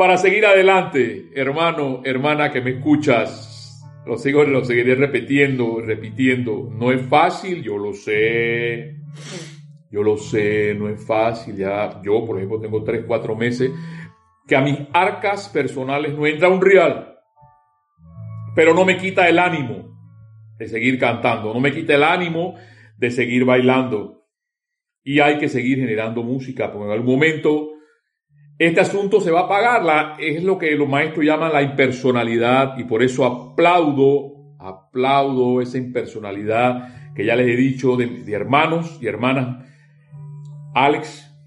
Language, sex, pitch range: Spanish, male, 120-155 Hz